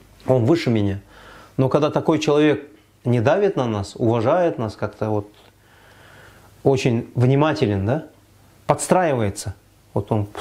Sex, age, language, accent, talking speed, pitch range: male, 30-49, Russian, native, 120 wpm, 105-140 Hz